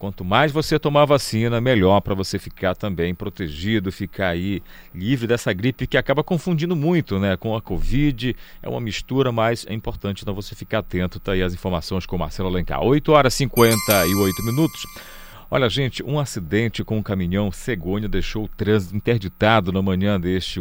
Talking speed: 180 wpm